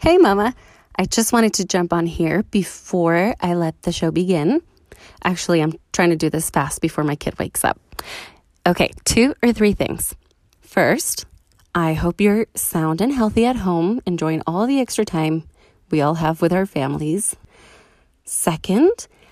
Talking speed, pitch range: 165 wpm, 160-210 Hz